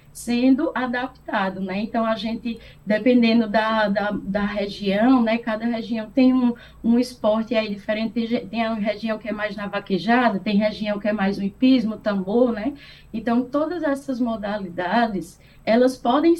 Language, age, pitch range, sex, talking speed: Portuguese, 10-29, 210-255 Hz, female, 165 wpm